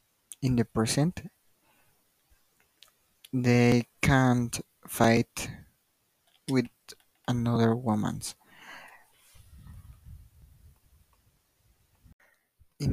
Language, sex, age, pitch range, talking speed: English, male, 50-69, 115-130 Hz, 45 wpm